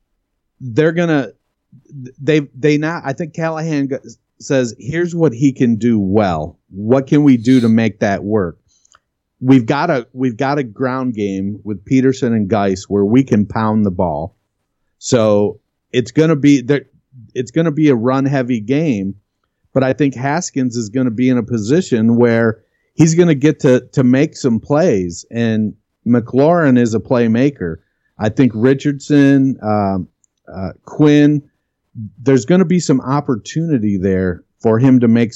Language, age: English, 50-69